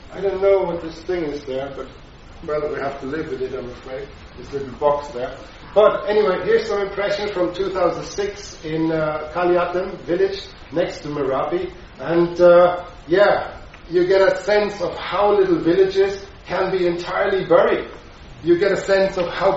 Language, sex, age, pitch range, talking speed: English, male, 40-59, 155-195 Hz, 175 wpm